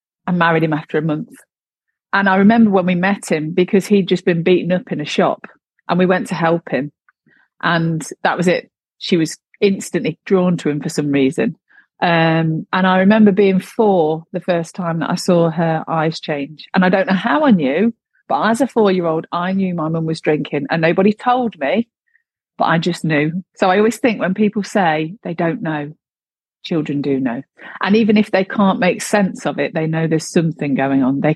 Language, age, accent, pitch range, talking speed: English, 40-59, British, 160-190 Hz, 210 wpm